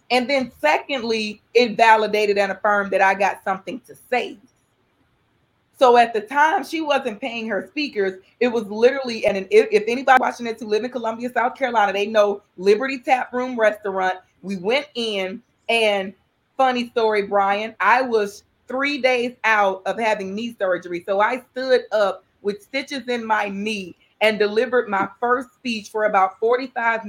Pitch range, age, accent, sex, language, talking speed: 205-245 Hz, 30-49, American, female, English, 170 wpm